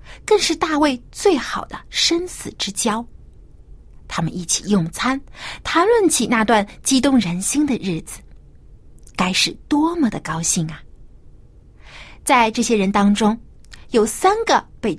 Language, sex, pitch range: Chinese, female, 195-320 Hz